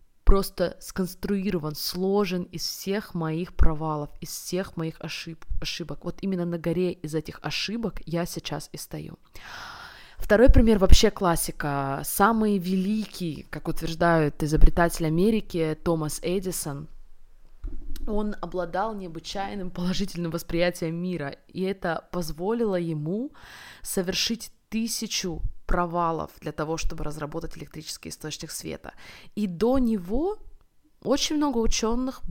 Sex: female